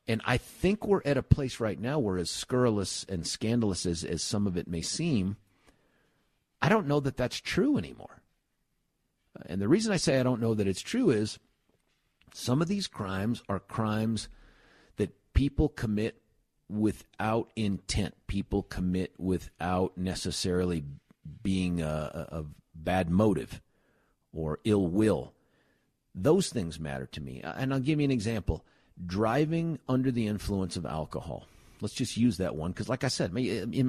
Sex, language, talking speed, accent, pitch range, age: male, English, 160 wpm, American, 95-135 Hz, 50-69